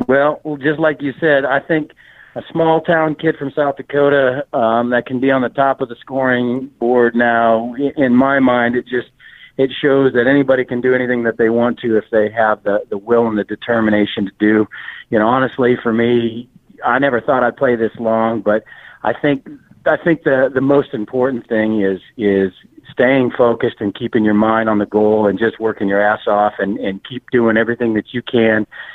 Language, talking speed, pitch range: English, 205 wpm, 110-135 Hz